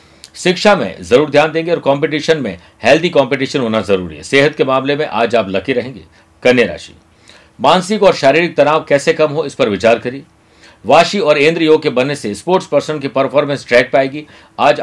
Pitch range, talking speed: 130-165 Hz, 60 wpm